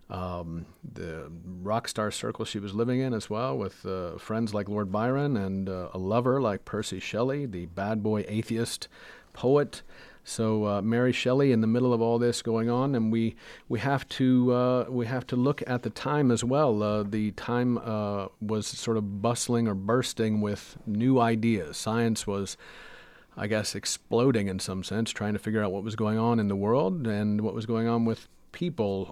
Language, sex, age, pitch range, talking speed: English, male, 50-69, 105-120 Hz, 195 wpm